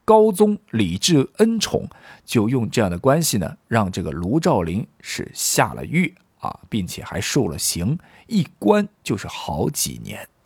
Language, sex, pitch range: Chinese, male, 95-145 Hz